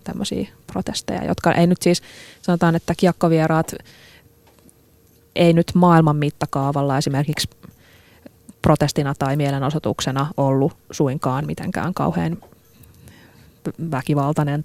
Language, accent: Finnish, native